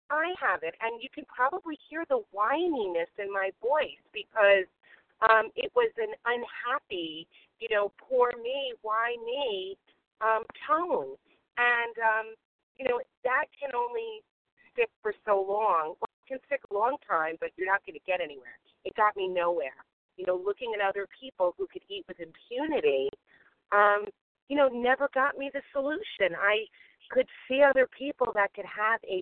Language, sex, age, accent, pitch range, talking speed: English, female, 40-59, American, 205-310 Hz, 175 wpm